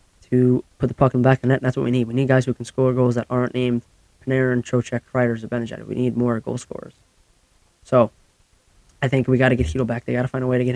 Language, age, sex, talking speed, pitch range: English, 10-29, male, 285 wpm, 105-125 Hz